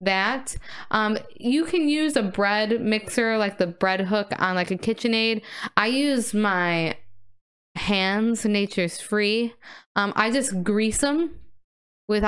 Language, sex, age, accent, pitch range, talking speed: English, female, 20-39, American, 195-245 Hz, 135 wpm